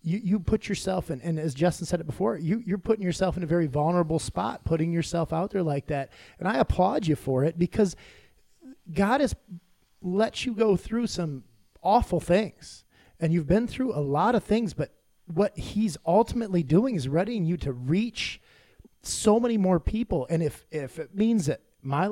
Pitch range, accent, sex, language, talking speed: 155-205 Hz, American, male, English, 195 wpm